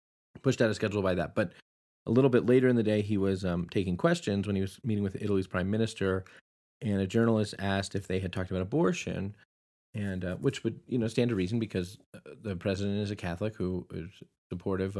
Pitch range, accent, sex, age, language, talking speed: 95-105 Hz, American, male, 20-39, English, 220 wpm